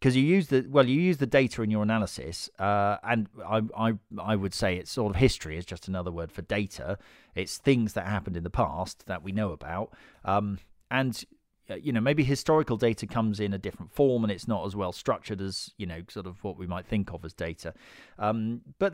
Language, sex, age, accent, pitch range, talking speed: English, male, 40-59, British, 100-130 Hz, 230 wpm